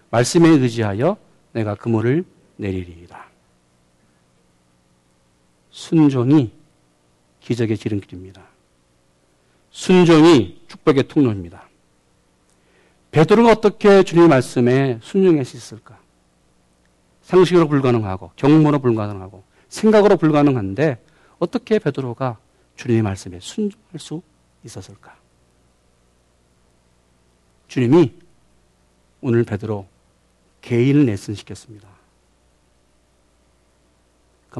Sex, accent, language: male, native, Korean